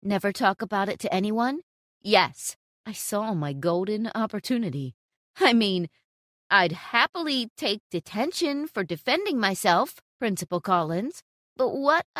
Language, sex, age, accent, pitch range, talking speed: English, female, 30-49, American, 170-265 Hz, 125 wpm